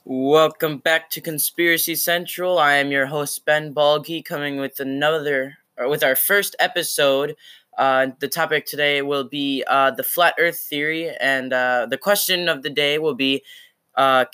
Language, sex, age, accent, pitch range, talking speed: English, male, 10-29, American, 135-160 Hz, 165 wpm